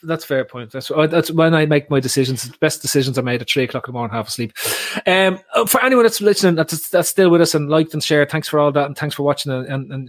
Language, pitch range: English, 135-160 Hz